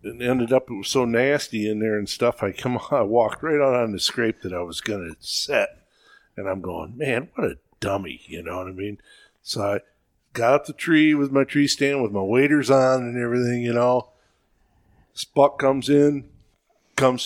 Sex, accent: male, American